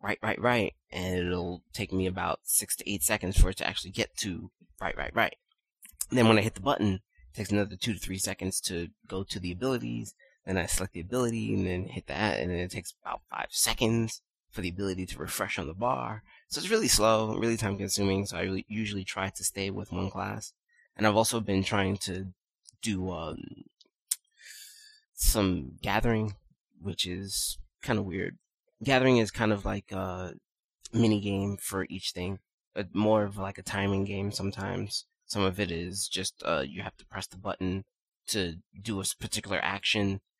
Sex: male